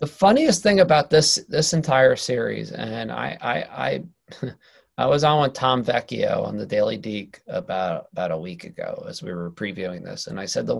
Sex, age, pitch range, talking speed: male, 30-49, 125-160 Hz, 200 wpm